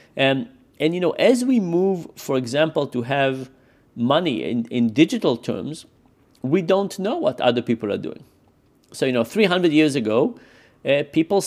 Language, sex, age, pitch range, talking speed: English, male, 40-59, 130-160 Hz, 165 wpm